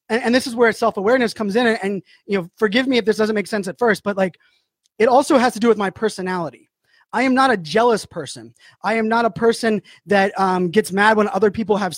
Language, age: English, 20-39